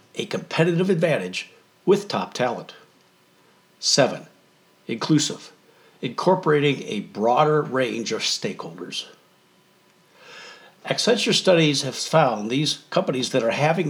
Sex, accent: male, American